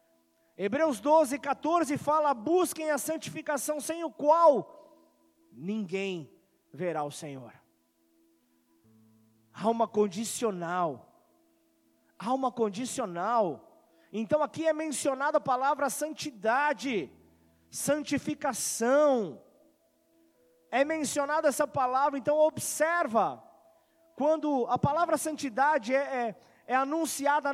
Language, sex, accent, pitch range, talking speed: Portuguese, male, Brazilian, 230-315 Hz, 85 wpm